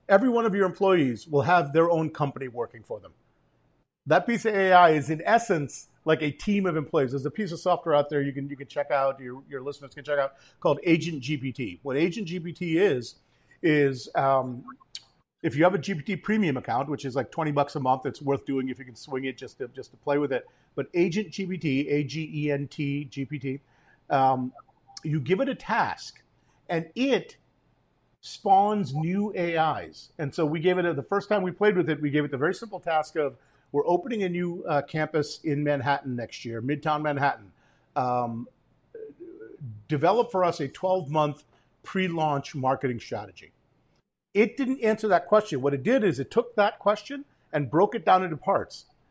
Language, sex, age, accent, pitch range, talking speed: English, male, 40-59, American, 140-185 Hz, 200 wpm